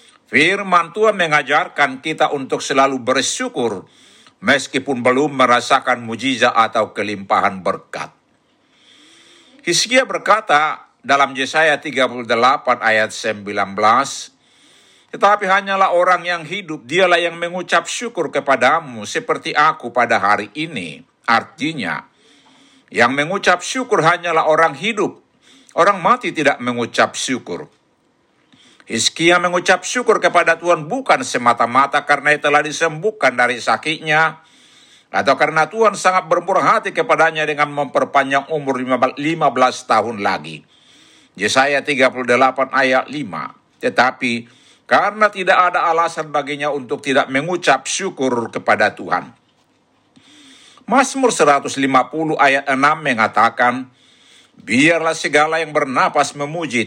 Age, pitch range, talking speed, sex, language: 60-79, 130-180 Hz, 105 wpm, male, Indonesian